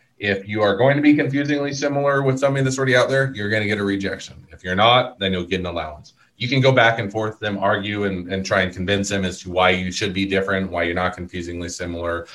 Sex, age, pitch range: male, 30-49, 95-115 Hz